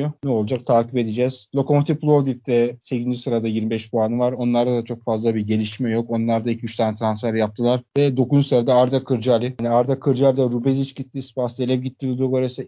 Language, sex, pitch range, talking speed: Turkish, male, 120-135 Hz, 175 wpm